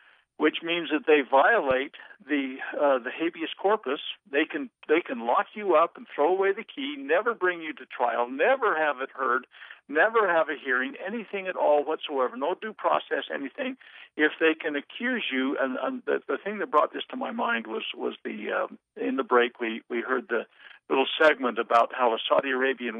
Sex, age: male, 60-79